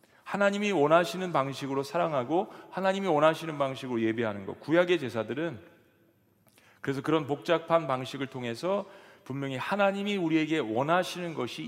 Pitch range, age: 115-175 Hz, 40-59